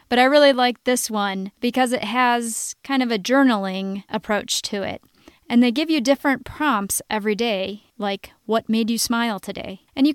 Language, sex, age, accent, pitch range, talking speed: English, female, 30-49, American, 200-255 Hz, 190 wpm